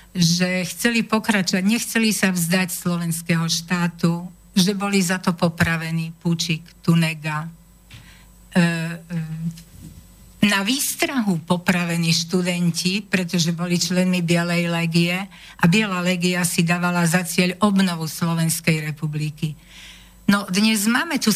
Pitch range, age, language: 170-205 Hz, 60-79, Slovak